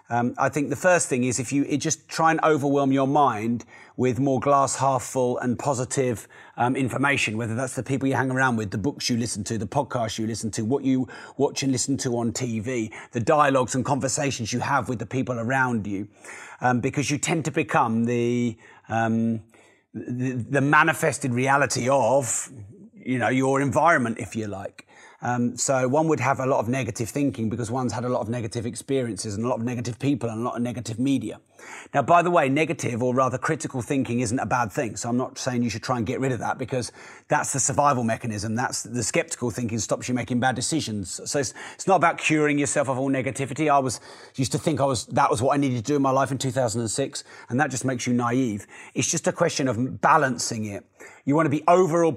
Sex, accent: male, British